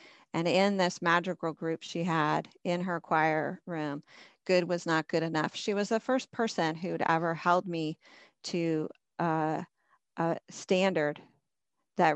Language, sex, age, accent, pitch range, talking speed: English, female, 40-59, American, 165-195 Hz, 150 wpm